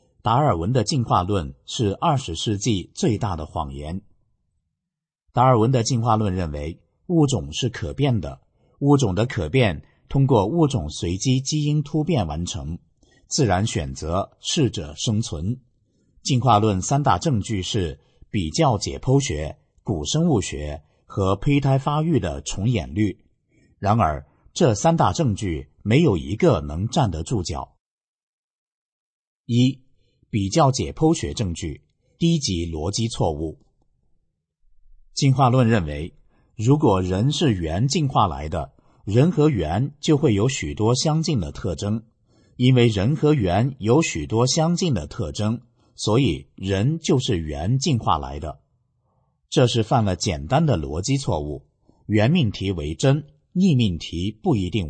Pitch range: 90-135 Hz